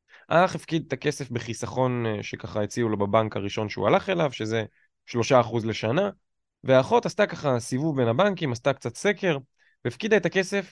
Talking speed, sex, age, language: 155 wpm, male, 20-39, Hebrew